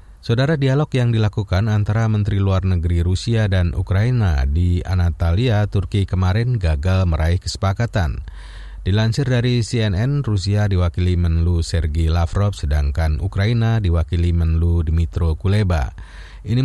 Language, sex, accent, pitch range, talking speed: Indonesian, male, native, 85-105 Hz, 120 wpm